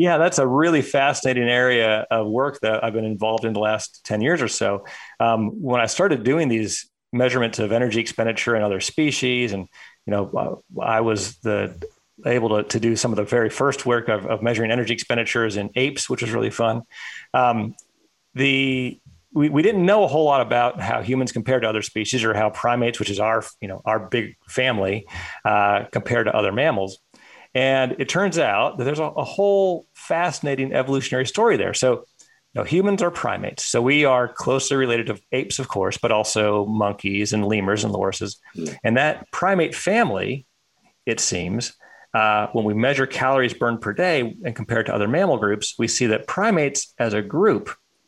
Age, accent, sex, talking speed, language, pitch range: 40-59, American, male, 190 wpm, English, 110-135 Hz